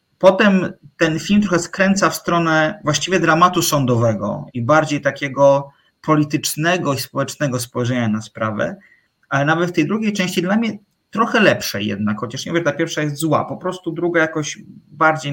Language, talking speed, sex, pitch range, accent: Polish, 165 wpm, male, 135-185 Hz, native